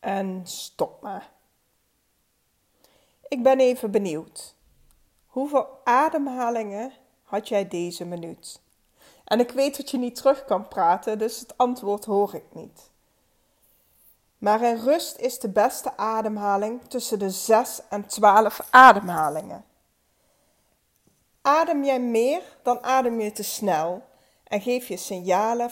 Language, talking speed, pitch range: Dutch, 125 wpm, 190-240 Hz